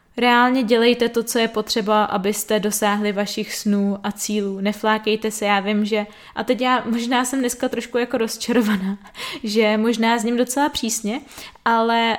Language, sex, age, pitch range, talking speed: Czech, female, 20-39, 210-240 Hz, 160 wpm